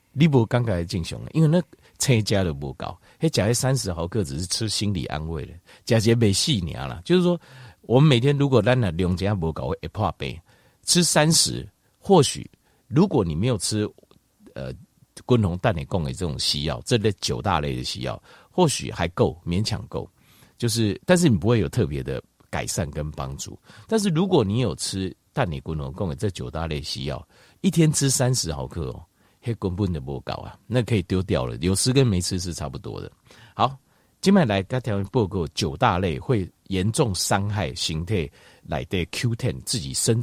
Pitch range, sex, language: 85-125 Hz, male, Chinese